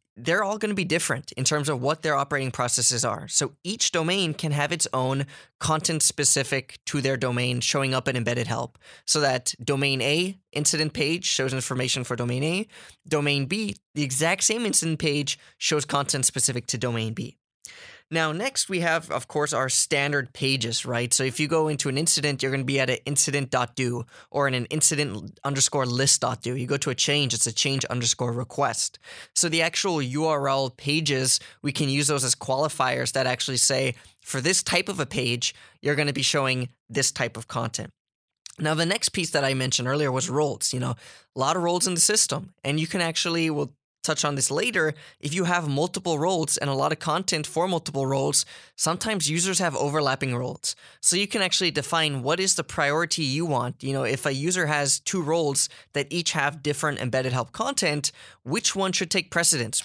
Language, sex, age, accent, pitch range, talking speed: English, male, 20-39, American, 130-160 Hz, 200 wpm